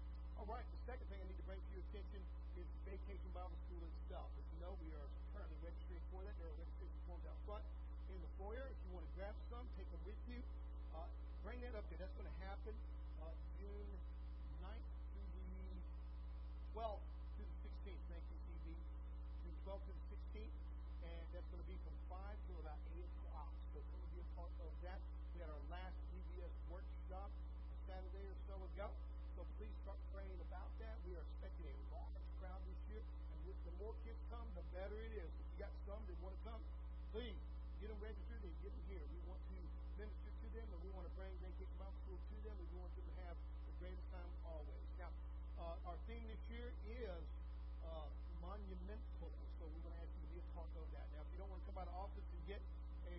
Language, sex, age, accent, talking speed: English, male, 50-69, American, 225 wpm